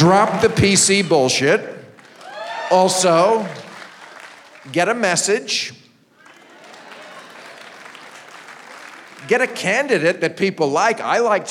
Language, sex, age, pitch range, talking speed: English, male, 50-69, 160-195 Hz, 85 wpm